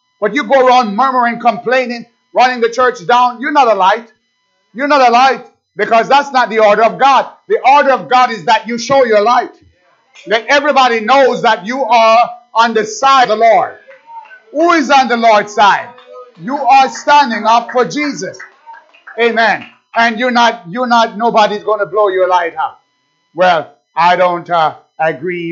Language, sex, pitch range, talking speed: English, male, 185-255 Hz, 180 wpm